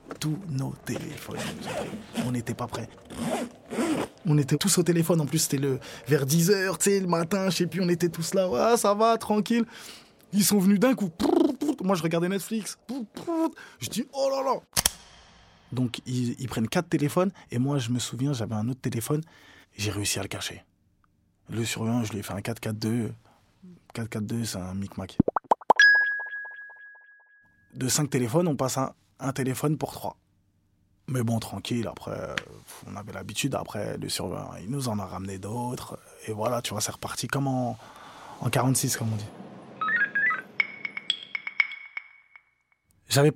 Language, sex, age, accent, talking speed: French, male, 20-39, French, 165 wpm